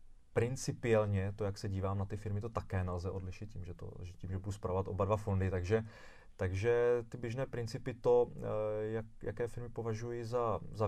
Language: Czech